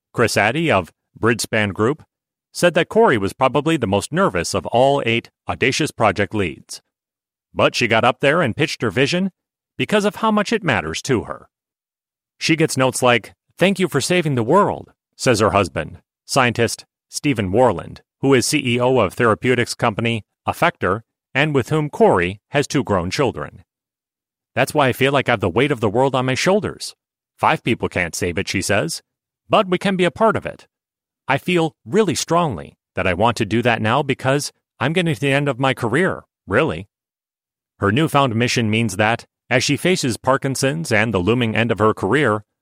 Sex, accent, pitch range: male, American, 115-145 Hz